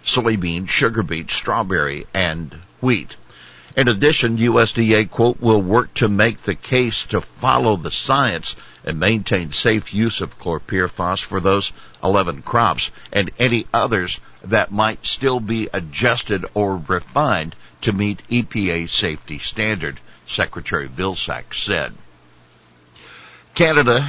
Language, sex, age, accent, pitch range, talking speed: English, male, 60-79, American, 90-115 Hz, 120 wpm